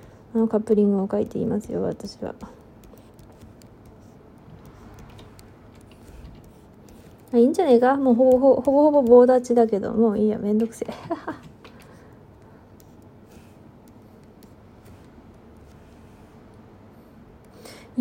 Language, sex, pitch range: Japanese, female, 205-245 Hz